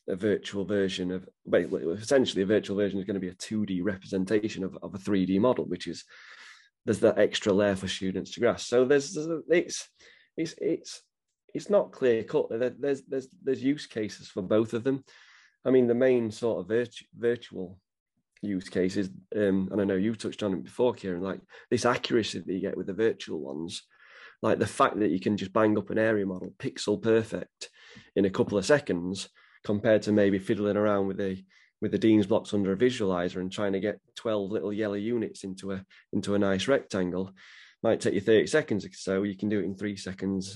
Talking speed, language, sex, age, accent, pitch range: 210 wpm, English, male, 30-49, British, 95-115 Hz